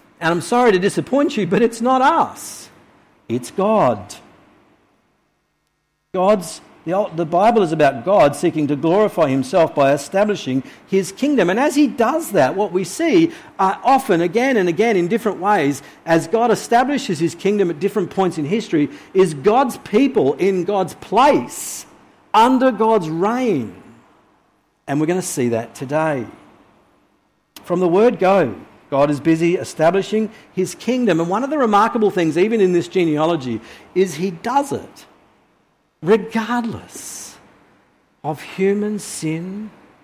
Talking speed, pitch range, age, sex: 145 wpm, 165-240 Hz, 50-69, male